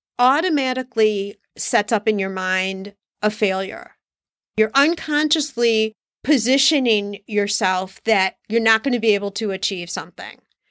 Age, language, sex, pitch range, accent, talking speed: 40-59, English, female, 200-265 Hz, American, 125 wpm